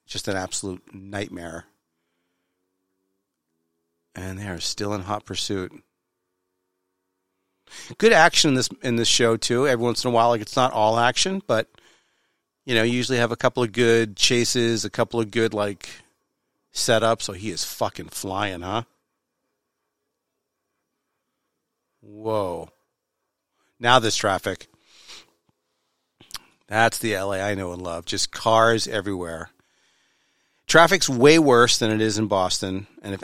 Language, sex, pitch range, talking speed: English, male, 95-120 Hz, 135 wpm